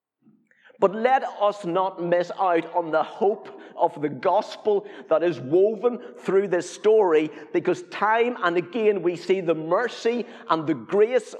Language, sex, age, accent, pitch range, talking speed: English, male, 50-69, British, 160-215 Hz, 155 wpm